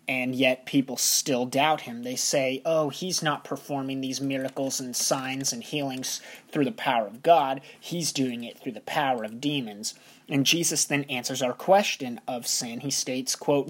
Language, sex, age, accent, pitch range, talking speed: English, male, 20-39, American, 130-160 Hz, 185 wpm